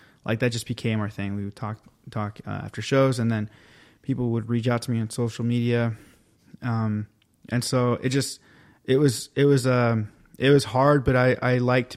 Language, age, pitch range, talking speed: English, 20-39, 110-130 Hz, 205 wpm